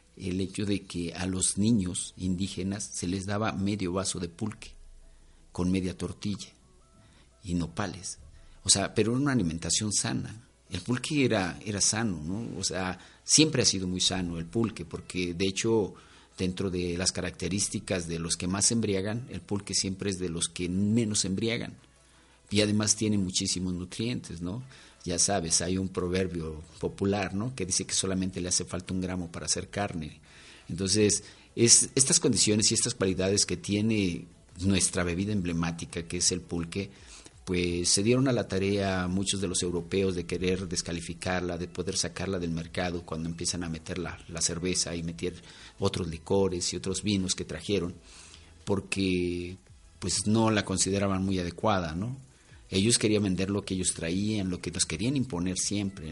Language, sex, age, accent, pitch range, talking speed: Spanish, male, 50-69, Mexican, 85-105 Hz, 170 wpm